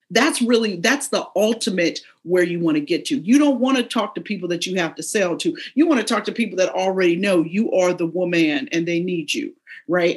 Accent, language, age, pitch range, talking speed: American, English, 40-59, 185-275 Hz, 250 wpm